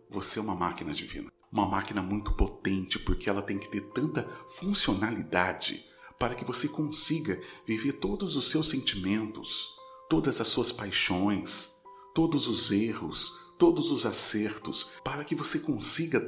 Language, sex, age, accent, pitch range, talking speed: Portuguese, male, 40-59, Brazilian, 100-130 Hz, 145 wpm